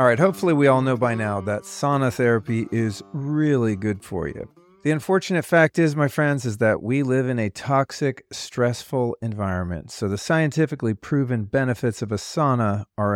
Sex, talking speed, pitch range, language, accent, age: male, 185 wpm, 110-140 Hz, English, American, 40-59